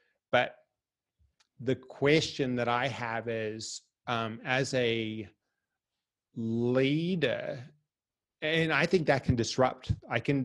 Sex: male